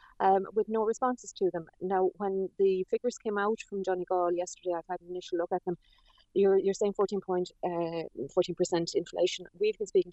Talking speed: 190 wpm